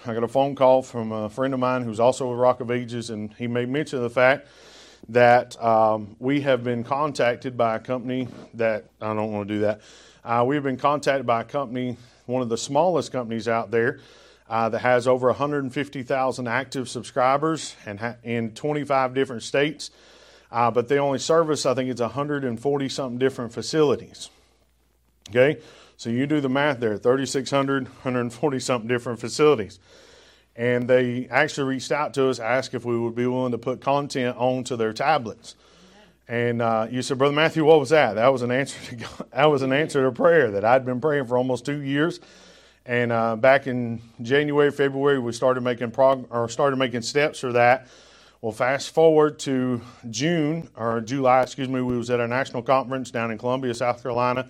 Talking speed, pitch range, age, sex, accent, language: 190 wpm, 120-135 Hz, 40-59, male, American, English